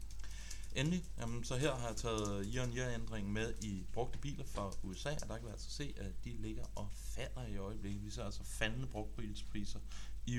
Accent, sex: native, male